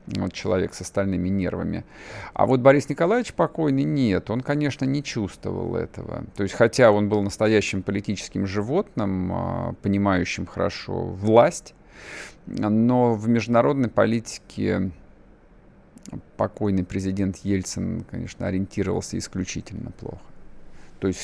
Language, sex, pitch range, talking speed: Russian, male, 95-120 Hz, 115 wpm